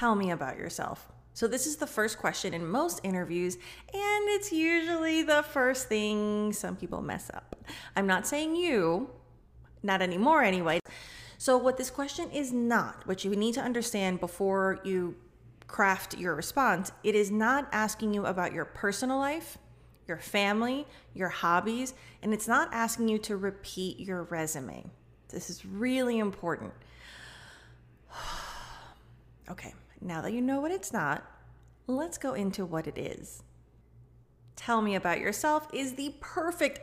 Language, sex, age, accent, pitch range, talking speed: English, female, 30-49, American, 185-265 Hz, 155 wpm